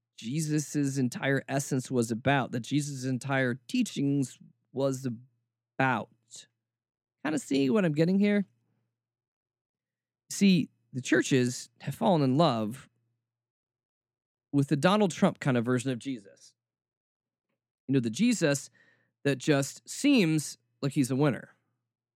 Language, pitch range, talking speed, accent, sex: English, 120-170 Hz, 120 wpm, American, male